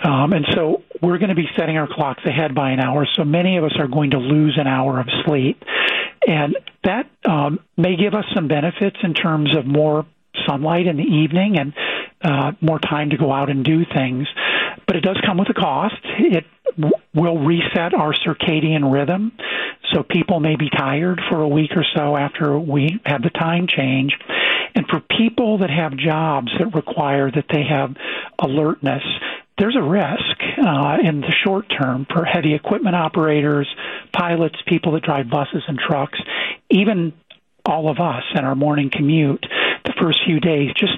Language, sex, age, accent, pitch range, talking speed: English, male, 50-69, American, 145-175 Hz, 185 wpm